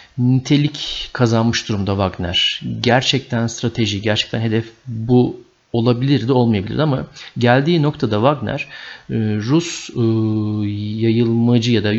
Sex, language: male, Turkish